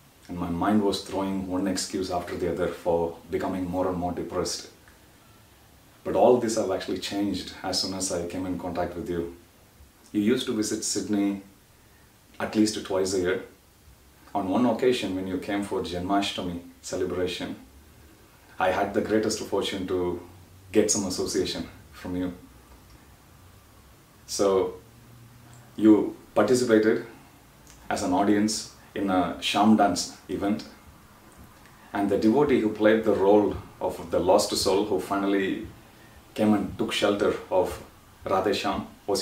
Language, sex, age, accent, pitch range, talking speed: English, male, 30-49, Indian, 90-110 Hz, 140 wpm